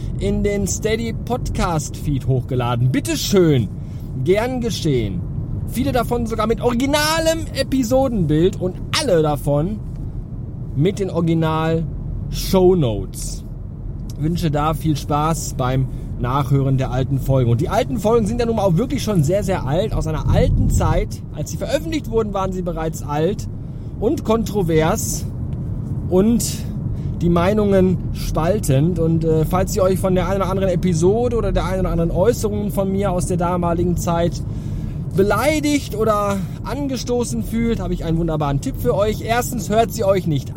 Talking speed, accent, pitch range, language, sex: 155 wpm, German, 125-190 Hz, German, male